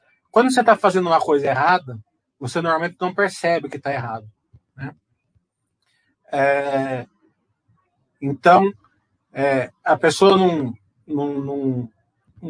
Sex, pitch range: male, 125-155 Hz